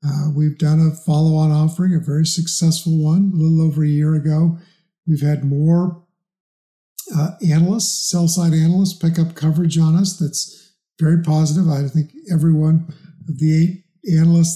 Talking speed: 170 wpm